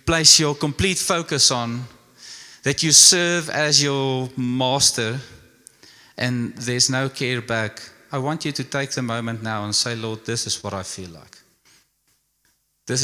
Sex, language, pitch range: male, English, 120-150 Hz